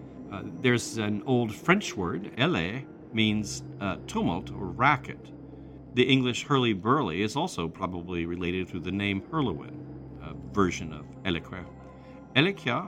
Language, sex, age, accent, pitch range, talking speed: English, male, 50-69, American, 90-120 Hz, 130 wpm